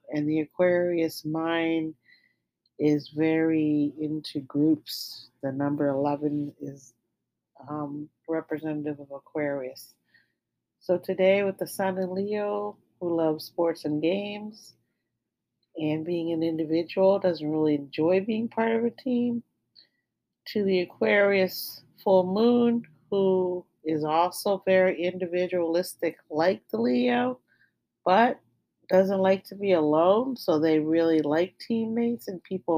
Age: 40-59